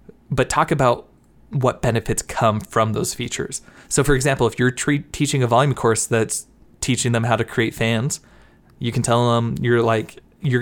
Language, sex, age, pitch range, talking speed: English, male, 20-39, 115-130 Hz, 180 wpm